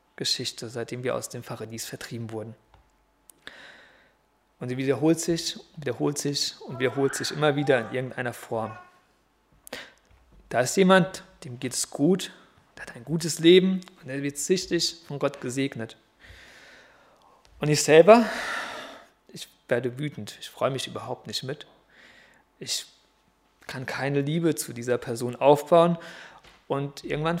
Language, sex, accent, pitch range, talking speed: German, male, German, 120-165 Hz, 140 wpm